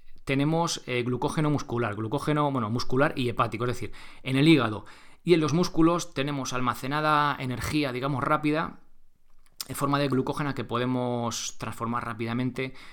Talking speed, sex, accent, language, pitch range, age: 145 wpm, male, Spanish, Spanish, 115-145 Hz, 20-39